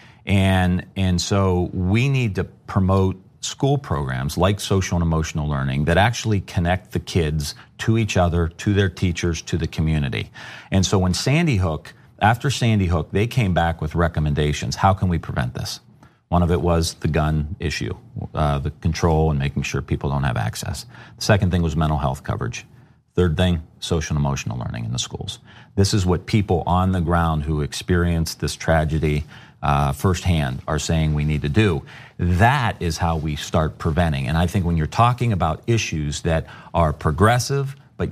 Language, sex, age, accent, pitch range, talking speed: English, male, 40-59, American, 85-110 Hz, 185 wpm